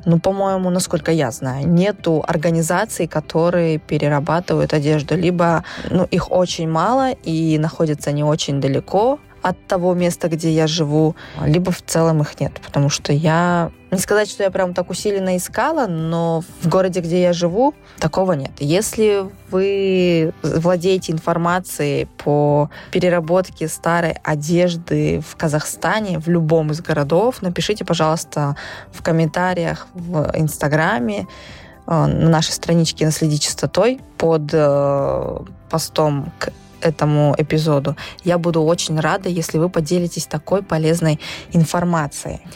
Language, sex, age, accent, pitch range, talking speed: Russian, female, 20-39, native, 155-185 Hz, 125 wpm